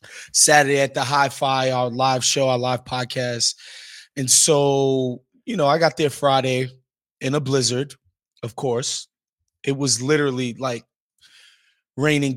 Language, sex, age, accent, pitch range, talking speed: English, male, 20-39, American, 135-185 Hz, 135 wpm